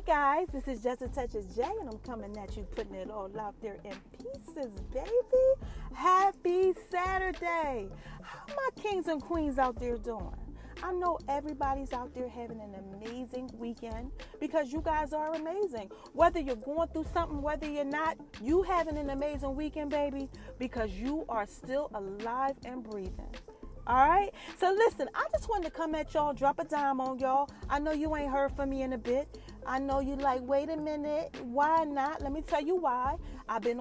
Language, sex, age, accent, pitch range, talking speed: English, female, 40-59, American, 260-340 Hz, 195 wpm